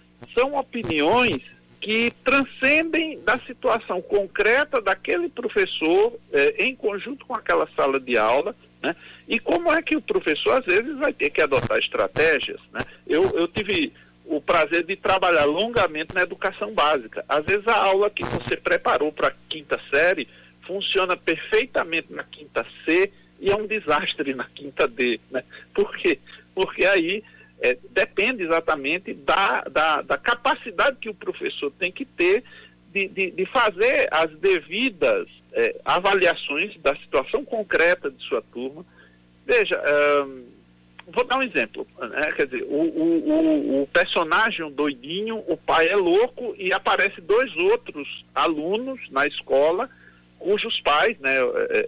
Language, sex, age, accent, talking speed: Portuguese, male, 60-79, Brazilian, 150 wpm